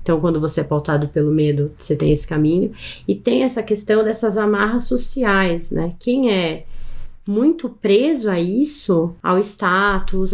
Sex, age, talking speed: female, 20-39, 155 wpm